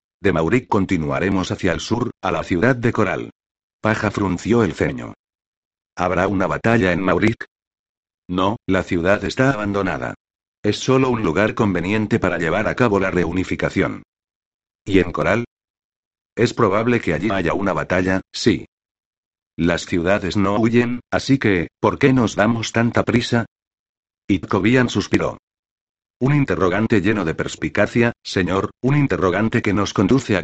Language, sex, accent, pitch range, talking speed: Spanish, male, Spanish, 90-115 Hz, 145 wpm